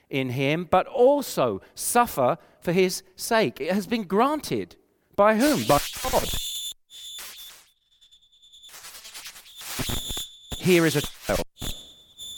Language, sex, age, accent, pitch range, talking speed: English, male, 40-59, British, 125-175 Hz, 95 wpm